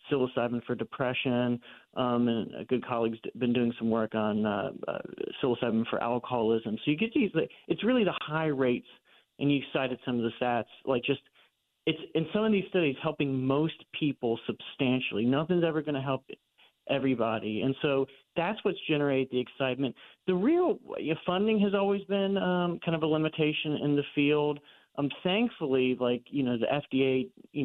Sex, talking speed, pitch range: male, 175 wpm, 125-155 Hz